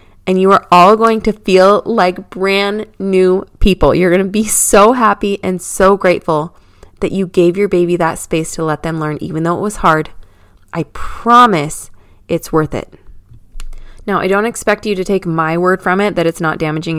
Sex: female